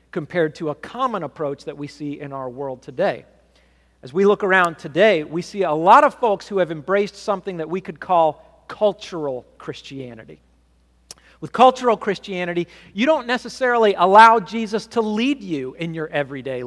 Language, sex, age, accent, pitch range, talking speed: English, male, 40-59, American, 140-205 Hz, 170 wpm